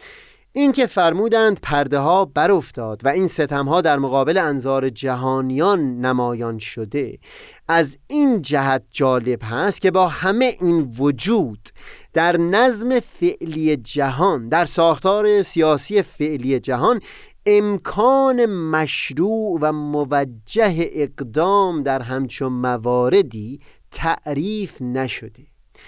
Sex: male